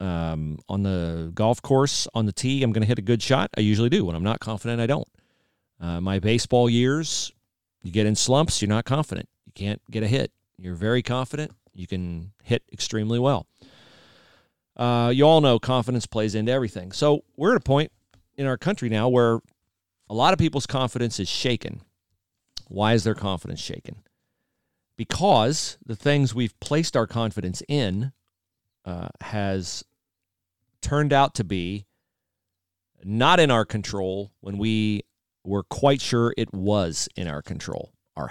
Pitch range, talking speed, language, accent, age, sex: 95-125 Hz, 170 wpm, English, American, 40-59, male